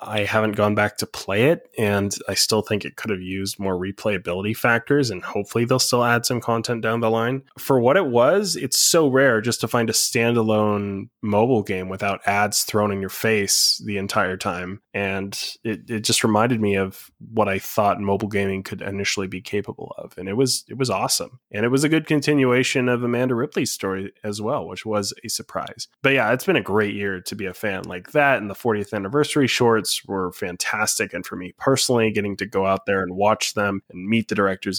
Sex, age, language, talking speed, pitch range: male, 20-39, English, 215 wpm, 100-125 Hz